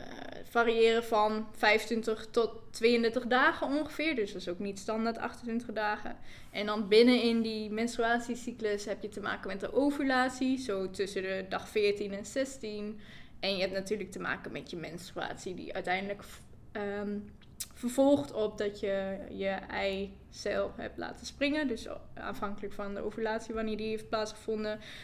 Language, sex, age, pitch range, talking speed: Dutch, female, 10-29, 205-230 Hz, 160 wpm